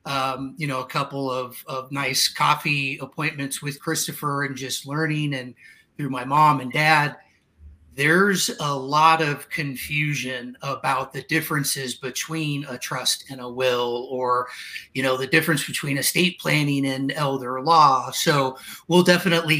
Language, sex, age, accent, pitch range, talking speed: English, male, 30-49, American, 140-165 Hz, 150 wpm